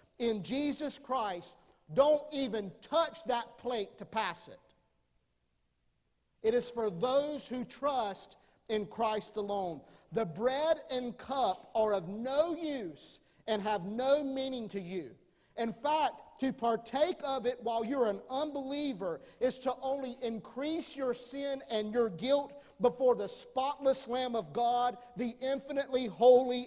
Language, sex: English, male